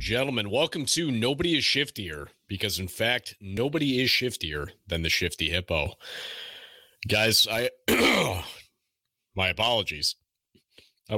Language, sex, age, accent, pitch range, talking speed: English, male, 30-49, American, 90-115 Hz, 115 wpm